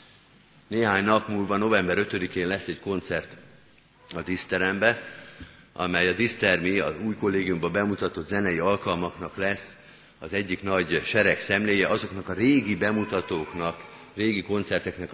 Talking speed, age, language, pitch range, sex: 125 wpm, 50-69, Hungarian, 90-110 Hz, male